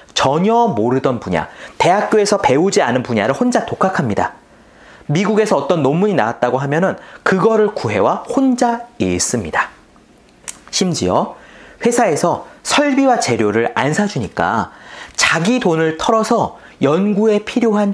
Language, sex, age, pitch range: Korean, male, 30-49, 155-225 Hz